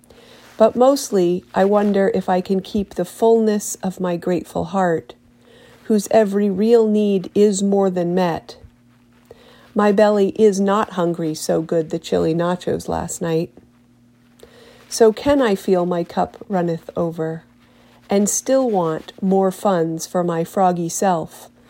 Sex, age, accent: female, 40-59, American